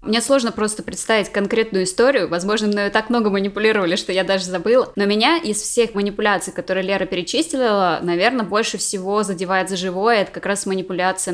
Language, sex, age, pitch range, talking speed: Russian, female, 20-39, 185-230 Hz, 175 wpm